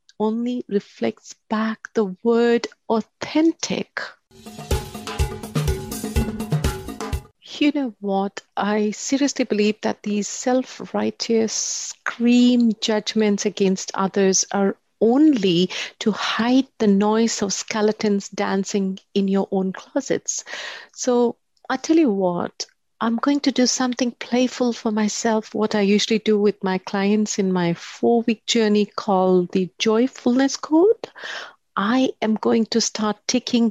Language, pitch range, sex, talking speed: English, 200-245 Hz, female, 115 wpm